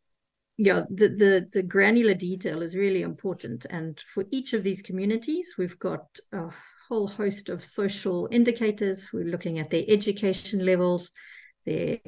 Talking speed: 150 wpm